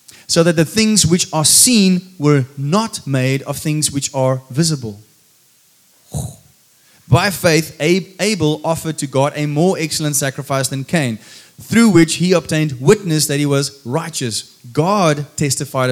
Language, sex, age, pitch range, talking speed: English, male, 20-39, 140-175 Hz, 145 wpm